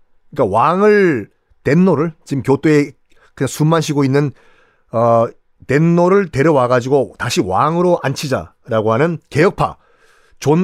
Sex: male